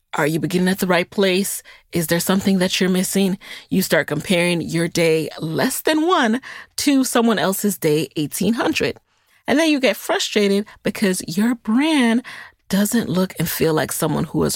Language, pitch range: English, 165-230 Hz